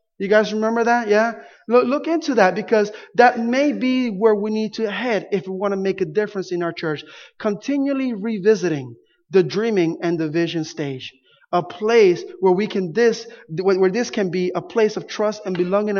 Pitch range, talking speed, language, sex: 185-230 Hz, 190 wpm, English, male